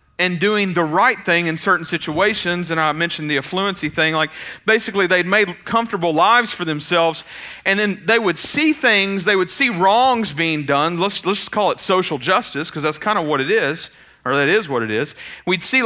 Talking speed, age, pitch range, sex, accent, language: 210 wpm, 40-59, 160-215 Hz, male, American, English